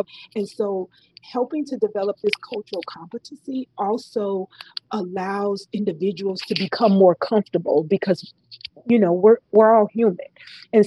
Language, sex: English, female